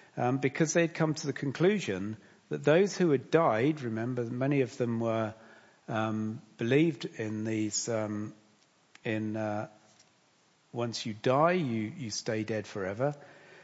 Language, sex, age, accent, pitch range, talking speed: English, male, 50-69, British, 110-150 Hz, 140 wpm